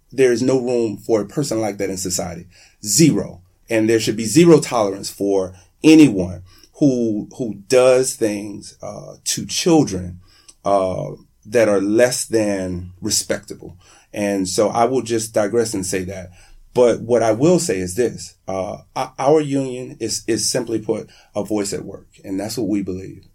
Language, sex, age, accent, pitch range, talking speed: English, male, 30-49, American, 100-140 Hz, 165 wpm